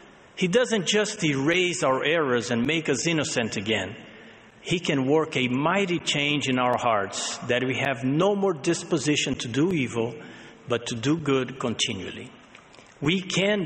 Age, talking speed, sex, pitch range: 50-69, 160 wpm, male, 130-180 Hz